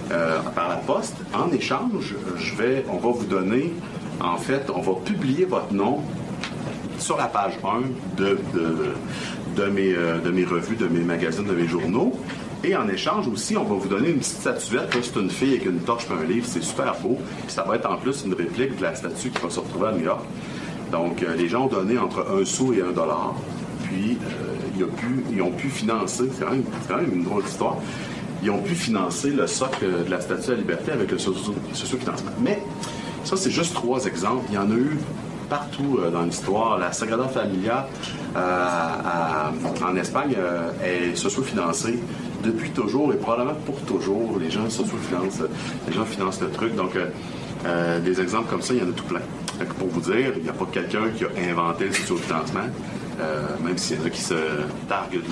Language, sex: French, male